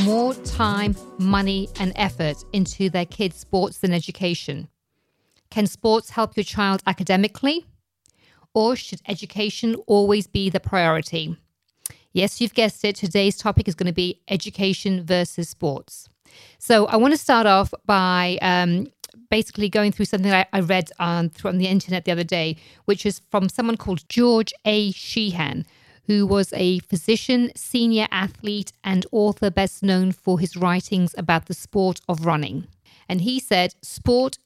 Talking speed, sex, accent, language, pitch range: 155 wpm, female, British, English, 180-210 Hz